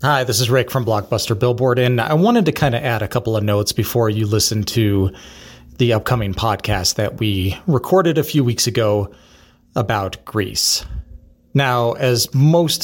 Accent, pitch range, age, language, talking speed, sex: American, 100-125 Hz, 30-49, English, 175 wpm, male